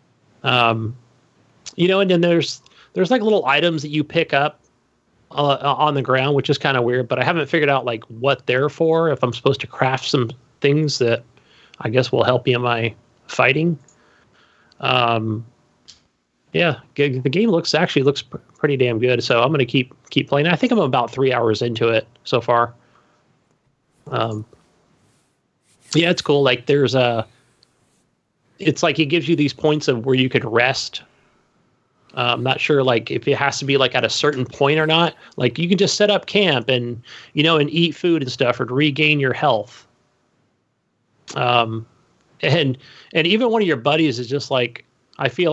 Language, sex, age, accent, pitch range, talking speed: English, male, 30-49, American, 125-155 Hz, 190 wpm